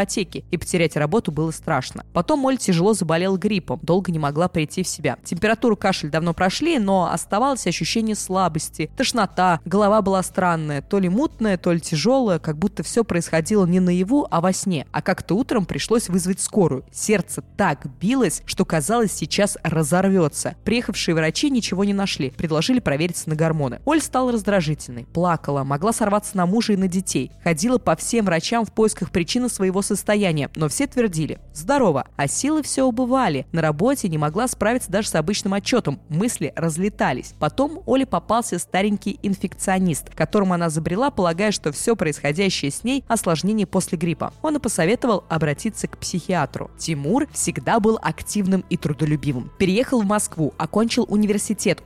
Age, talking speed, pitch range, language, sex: 20-39, 160 wpm, 165-220 Hz, Russian, female